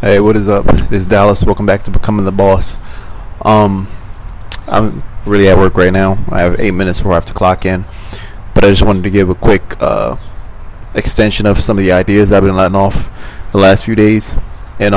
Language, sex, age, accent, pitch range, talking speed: English, male, 20-39, American, 95-110 Hz, 215 wpm